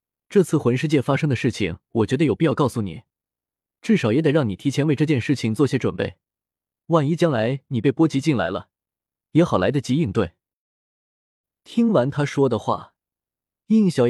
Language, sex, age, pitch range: Chinese, male, 20-39, 115-160 Hz